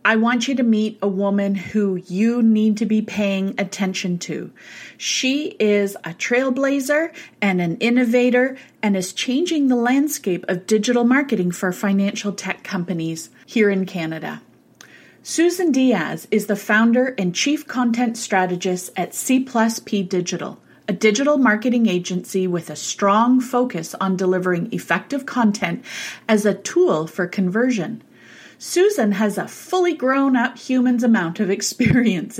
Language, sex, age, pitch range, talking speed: English, female, 30-49, 190-250 Hz, 140 wpm